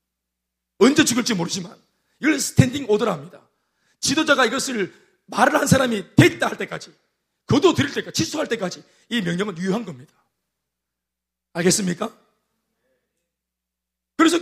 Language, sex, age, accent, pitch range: Korean, male, 40-59, native, 190-300 Hz